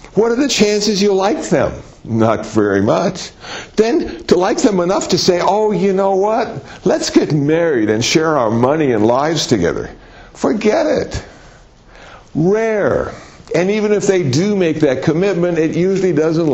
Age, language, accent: 60-79, English, American